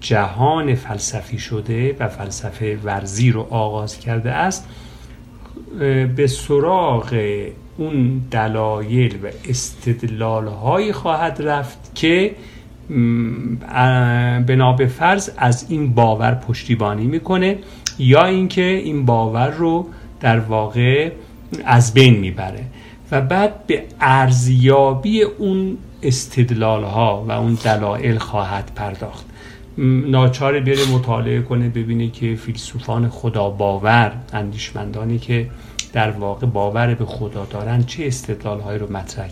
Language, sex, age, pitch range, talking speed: Persian, male, 50-69, 110-130 Hz, 105 wpm